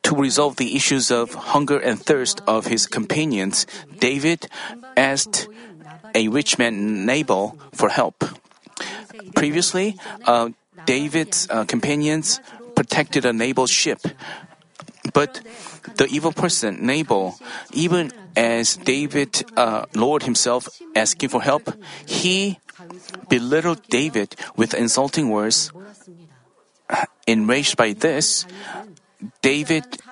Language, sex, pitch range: Korean, male, 120-175 Hz